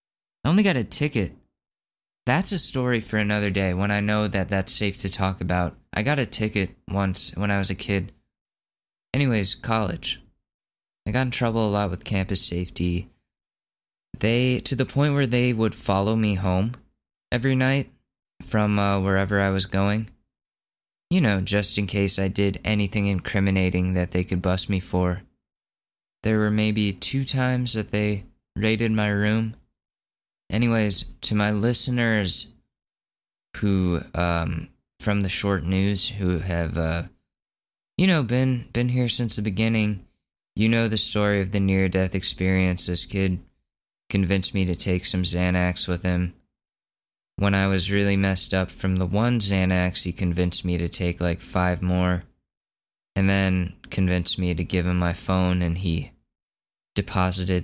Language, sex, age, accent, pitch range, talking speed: English, male, 20-39, American, 90-110 Hz, 160 wpm